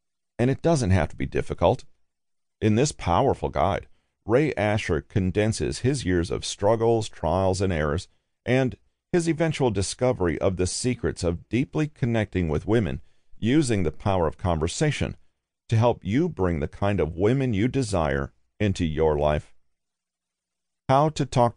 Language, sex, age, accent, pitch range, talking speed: English, male, 40-59, American, 85-120 Hz, 150 wpm